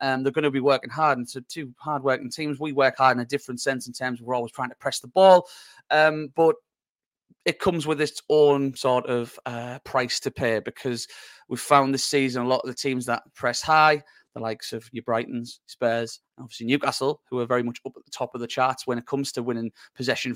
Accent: British